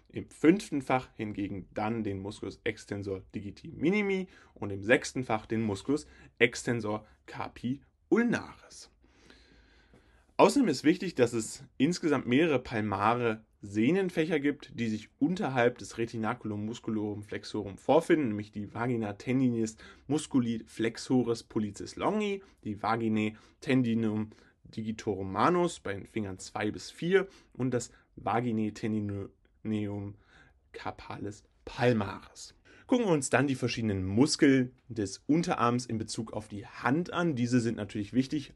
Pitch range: 105-125 Hz